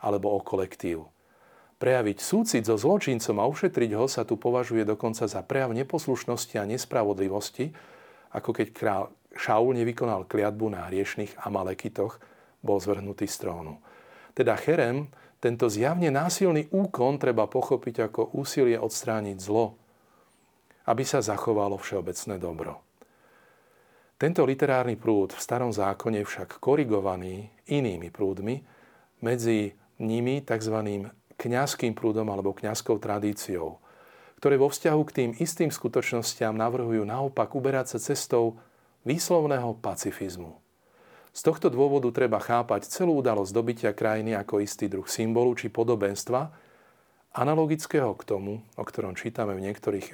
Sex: male